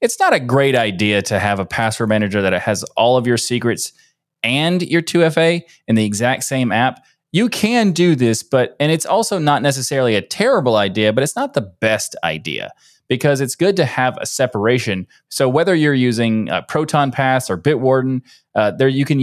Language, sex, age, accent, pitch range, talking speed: English, male, 20-39, American, 110-140 Hz, 195 wpm